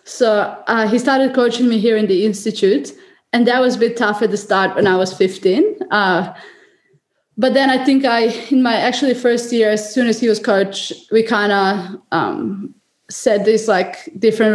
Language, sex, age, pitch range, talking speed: English, female, 20-39, 190-240 Hz, 195 wpm